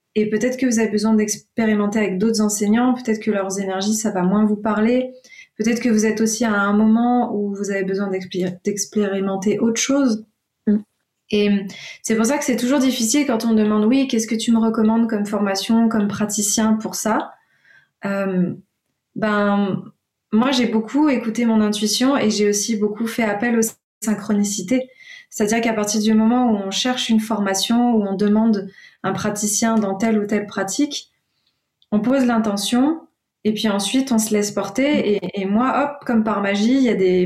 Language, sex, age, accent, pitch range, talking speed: French, female, 20-39, French, 200-230 Hz, 185 wpm